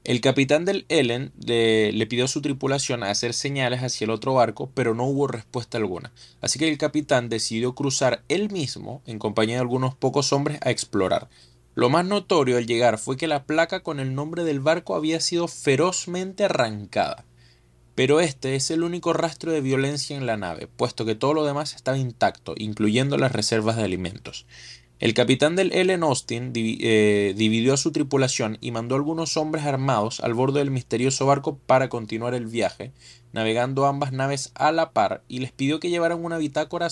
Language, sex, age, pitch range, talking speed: Spanish, male, 20-39, 115-150 Hz, 185 wpm